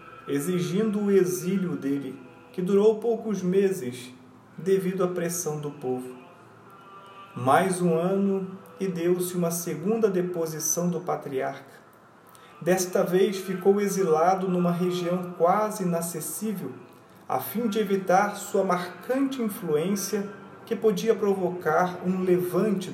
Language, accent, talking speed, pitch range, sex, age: Portuguese, Brazilian, 110 wpm, 155-195 Hz, male, 40-59